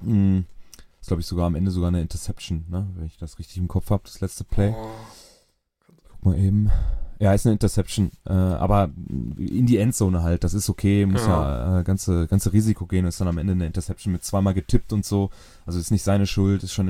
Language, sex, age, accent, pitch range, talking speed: German, male, 30-49, German, 90-105 Hz, 220 wpm